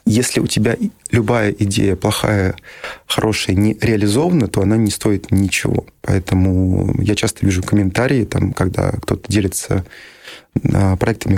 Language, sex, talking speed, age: Russian, male, 120 wpm, 20-39